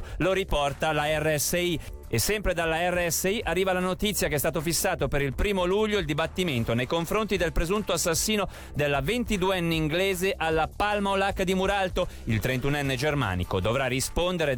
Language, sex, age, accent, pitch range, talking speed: Italian, male, 40-59, native, 135-185 Hz, 160 wpm